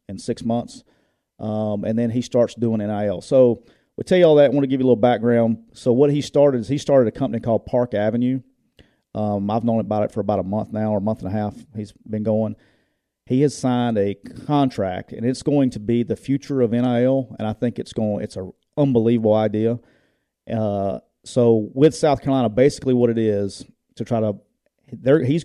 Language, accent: English, American